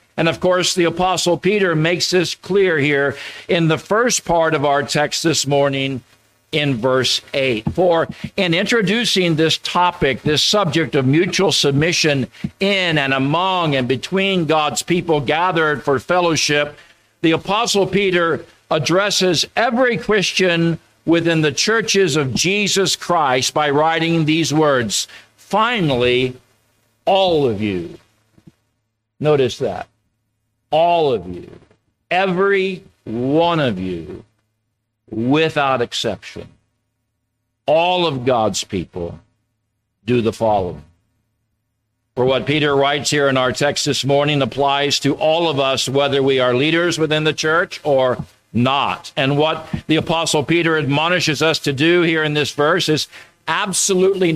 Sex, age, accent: male, 50-69, American